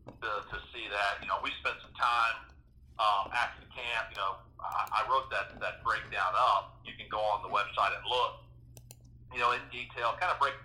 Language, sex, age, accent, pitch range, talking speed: English, male, 50-69, American, 105-130 Hz, 210 wpm